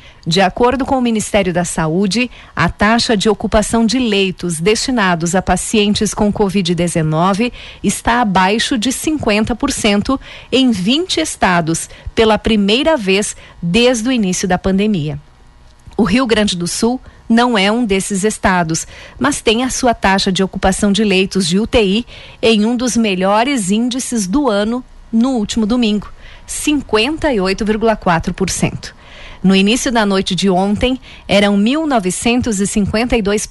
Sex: female